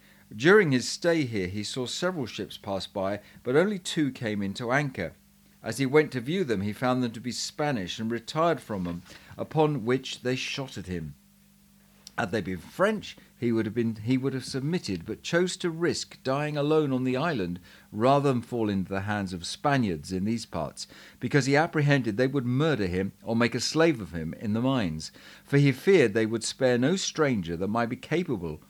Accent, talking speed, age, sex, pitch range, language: British, 205 wpm, 40-59, male, 105-145 Hz, English